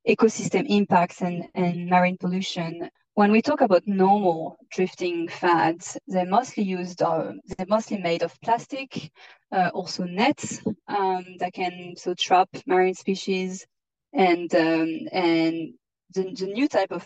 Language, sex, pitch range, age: English, female, 175-205 Hz, 20-39